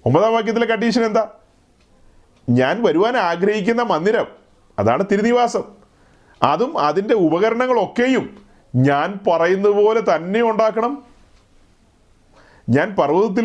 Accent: native